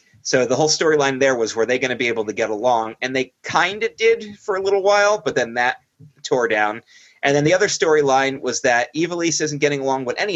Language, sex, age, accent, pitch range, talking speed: English, male, 30-49, American, 120-160 Hz, 245 wpm